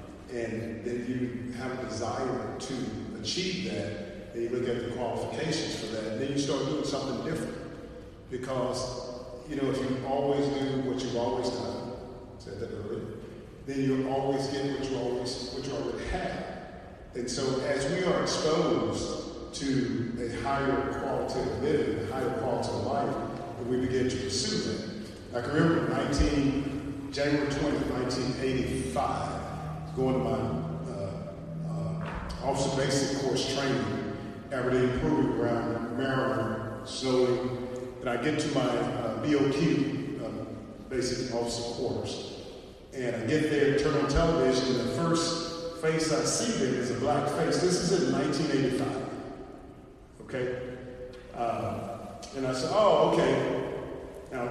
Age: 40-59